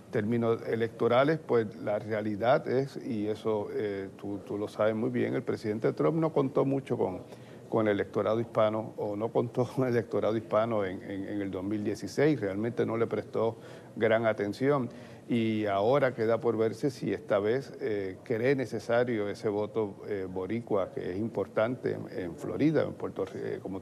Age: 50-69